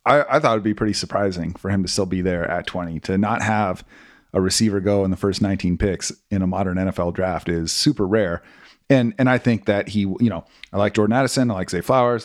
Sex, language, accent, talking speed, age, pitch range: male, English, American, 245 wpm, 30-49, 95-115 Hz